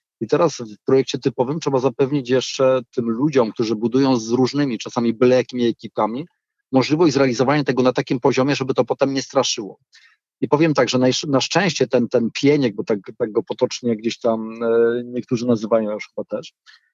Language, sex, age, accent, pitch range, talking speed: Polish, male, 40-59, native, 125-155 Hz, 175 wpm